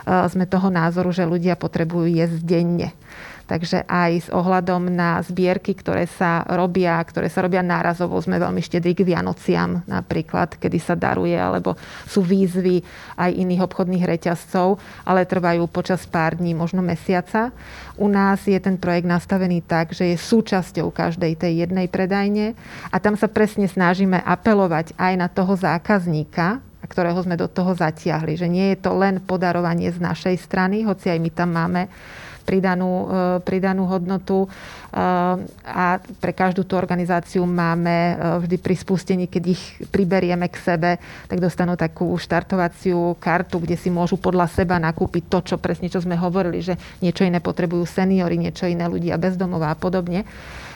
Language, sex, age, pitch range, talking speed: Slovak, female, 30-49, 175-185 Hz, 155 wpm